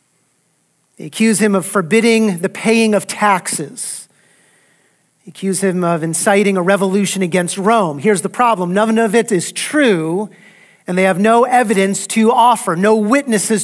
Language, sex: English, male